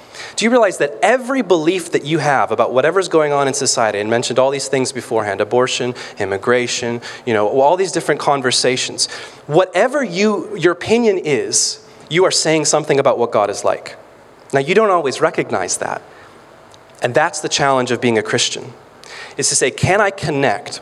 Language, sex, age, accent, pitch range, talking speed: English, male, 30-49, American, 130-190 Hz, 180 wpm